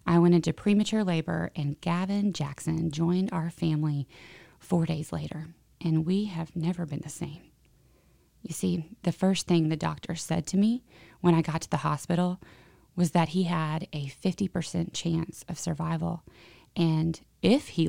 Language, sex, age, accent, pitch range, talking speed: English, female, 30-49, American, 160-185 Hz, 165 wpm